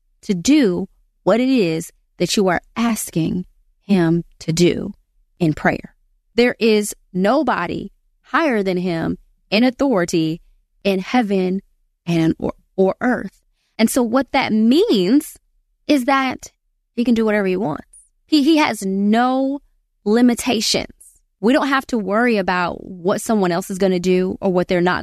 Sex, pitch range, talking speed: female, 185-240 Hz, 150 wpm